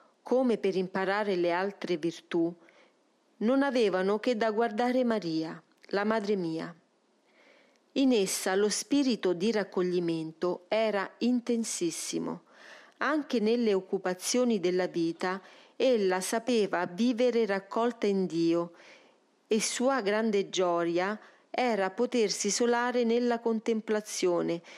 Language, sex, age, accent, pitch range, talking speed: Italian, female, 40-59, native, 185-230 Hz, 105 wpm